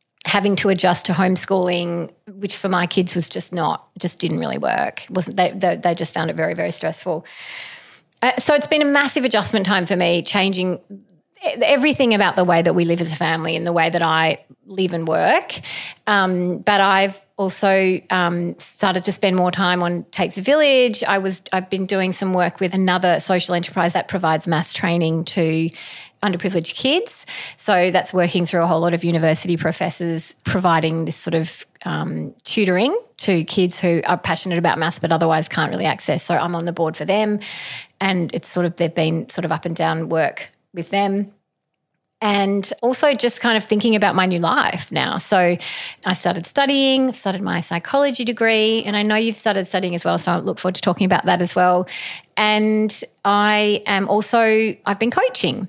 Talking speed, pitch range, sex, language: 190 wpm, 170-205 Hz, female, English